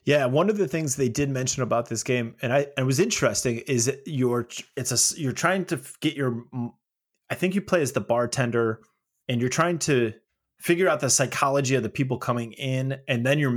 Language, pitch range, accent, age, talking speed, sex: English, 120-155 Hz, American, 30-49, 215 wpm, male